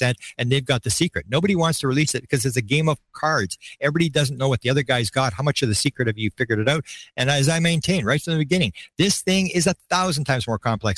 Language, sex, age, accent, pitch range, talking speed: English, male, 50-69, American, 120-155 Hz, 275 wpm